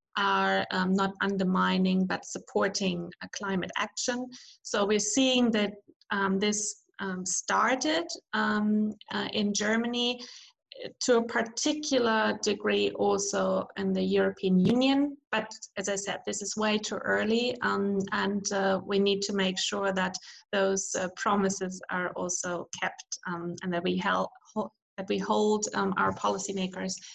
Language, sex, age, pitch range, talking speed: English, female, 20-39, 190-225 Hz, 145 wpm